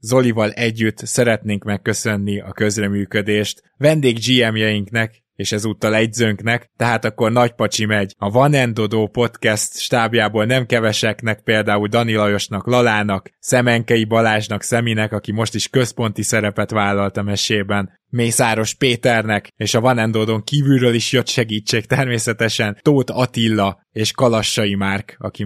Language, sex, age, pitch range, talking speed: Hungarian, male, 20-39, 100-120 Hz, 125 wpm